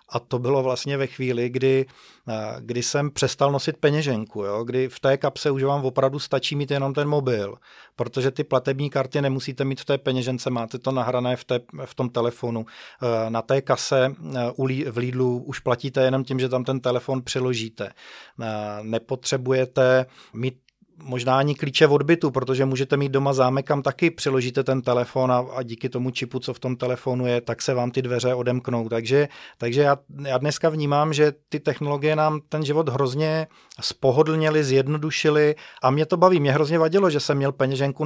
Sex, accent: male, native